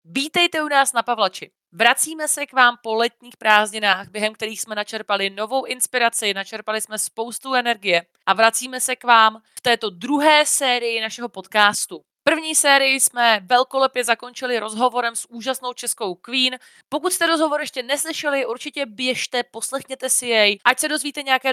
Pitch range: 205-260 Hz